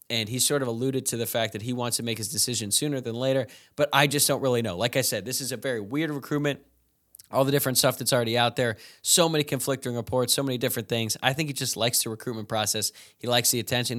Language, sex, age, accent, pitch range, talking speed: English, male, 20-39, American, 115-135 Hz, 260 wpm